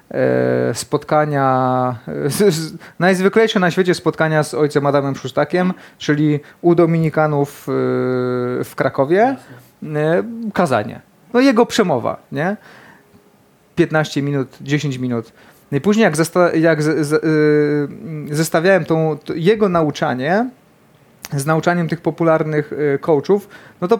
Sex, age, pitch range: male, 30-49, 140-180 Hz